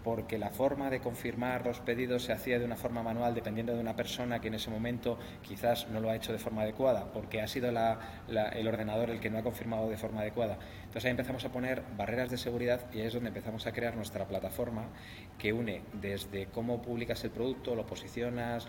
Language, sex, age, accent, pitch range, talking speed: Spanish, male, 30-49, Spanish, 105-120 Hz, 225 wpm